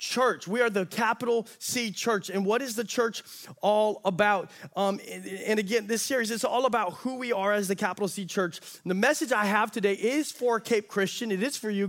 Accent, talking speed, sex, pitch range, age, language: American, 225 wpm, male, 190-235 Hz, 30-49, English